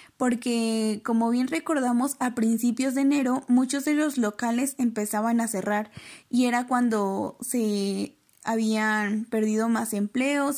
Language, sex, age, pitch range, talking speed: Spanish, female, 10-29, 225-270 Hz, 130 wpm